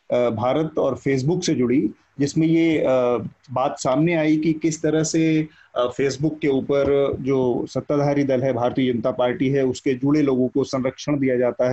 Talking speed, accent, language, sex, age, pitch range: 165 wpm, native, Hindi, male, 30-49, 125-155 Hz